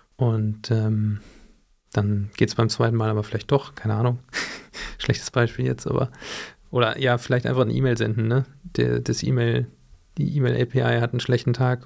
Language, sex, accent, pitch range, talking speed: German, male, German, 115-130 Hz, 170 wpm